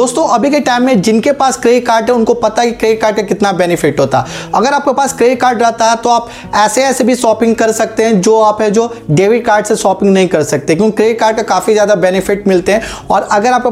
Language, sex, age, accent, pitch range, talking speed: Hindi, male, 20-39, native, 200-245 Hz, 160 wpm